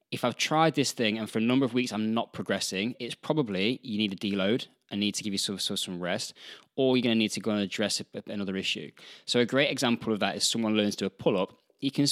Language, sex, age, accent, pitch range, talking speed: English, male, 20-39, British, 100-120 Hz, 265 wpm